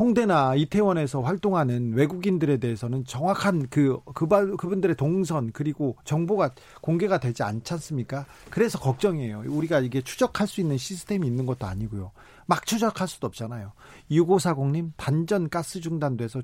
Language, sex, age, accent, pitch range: Korean, male, 40-59, native, 130-185 Hz